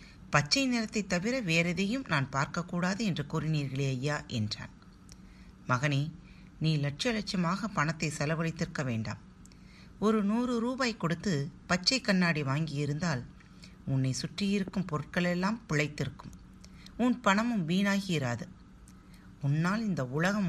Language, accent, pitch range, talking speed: Tamil, native, 130-190 Hz, 105 wpm